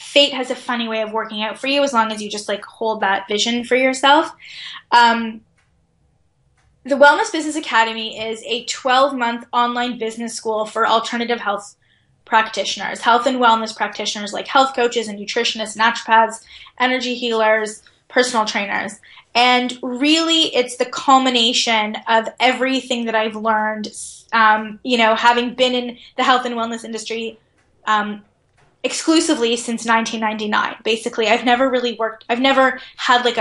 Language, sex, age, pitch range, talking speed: English, female, 10-29, 220-260 Hz, 150 wpm